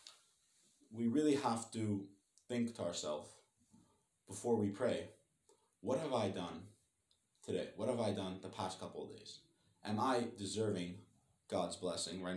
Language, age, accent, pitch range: English, 30-49, American, 95-115 Hz